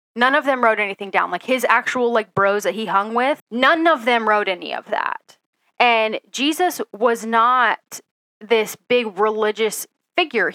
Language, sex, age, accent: English, female, 10-29, American